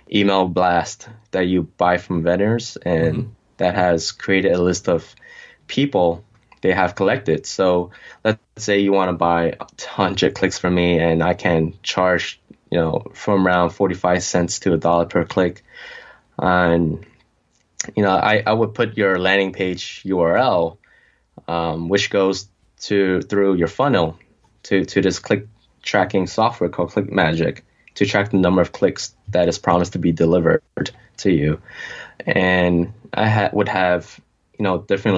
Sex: male